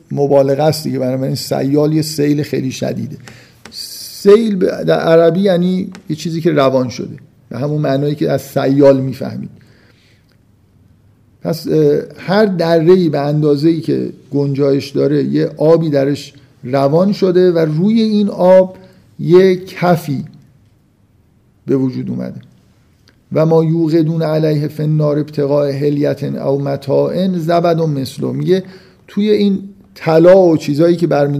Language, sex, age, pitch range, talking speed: Persian, male, 50-69, 135-170 Hz, 125 wpm